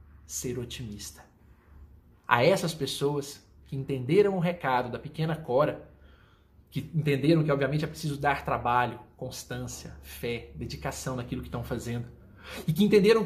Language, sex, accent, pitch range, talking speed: Portuguese, male, Brazilian, 110-165 Hz, 135 wpm